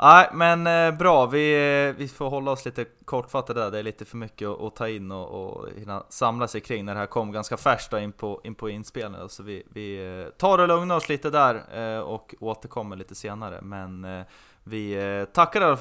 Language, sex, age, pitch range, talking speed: Swedish, male, 20-39, 100-130 Hz, 230 wpm